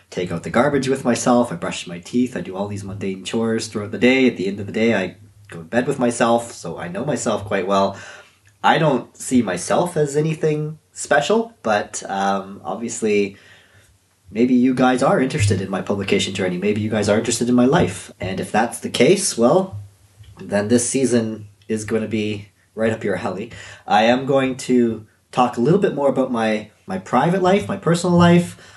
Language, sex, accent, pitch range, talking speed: English, male, American, 100-125 Hz, 205 wpm